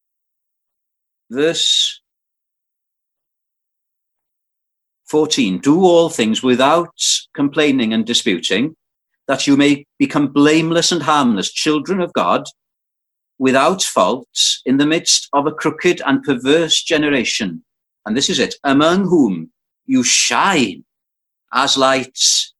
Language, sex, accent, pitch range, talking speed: English, male, British, 135-200 Hz, 105 wpm